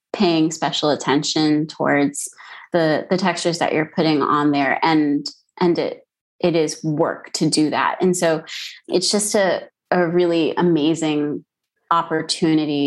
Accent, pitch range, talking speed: American, 150-175 Hz, 140 wpm